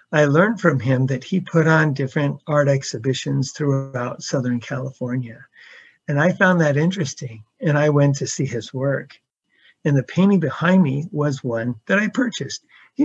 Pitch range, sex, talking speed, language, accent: 135-180 Hz, male, 170 wpm, English, American